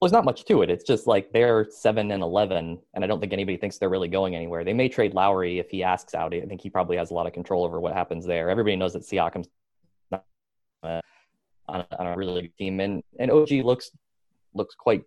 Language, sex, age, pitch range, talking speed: English, male, 20-39, 90-115 Hz, 245 wpm